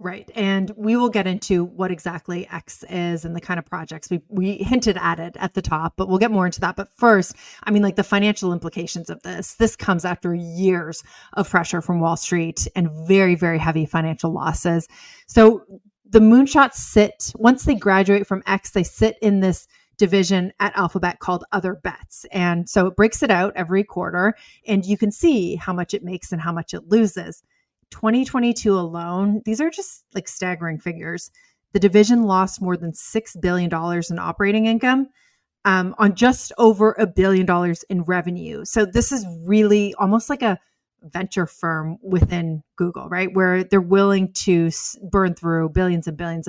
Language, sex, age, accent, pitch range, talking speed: English, female, 30-49, American, 175-210 Hz, 185 wpm